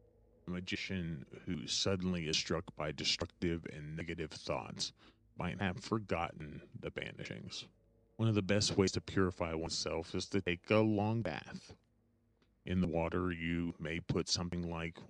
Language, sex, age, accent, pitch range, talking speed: English, male, 30-49, American, 85-105 Hz, 145 wpm